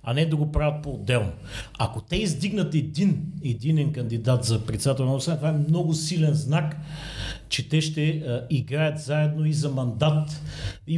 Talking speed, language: 165 wpm, Bulgarian